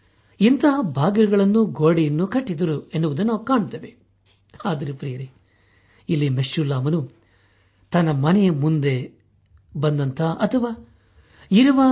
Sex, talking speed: male, 75 wpm